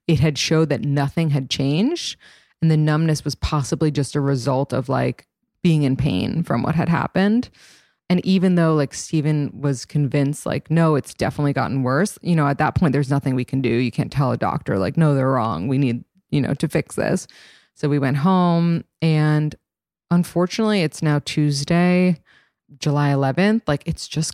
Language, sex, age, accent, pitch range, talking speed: English, female, 20-39, American, 140-165 Hz, 190 wpm